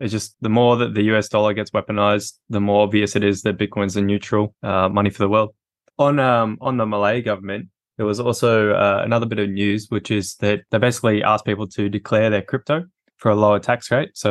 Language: English